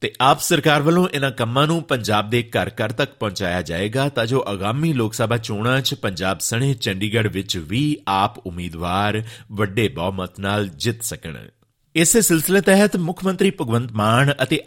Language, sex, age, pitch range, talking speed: Punjabi, male, 50-69, 100-145 Hz, 165 wpm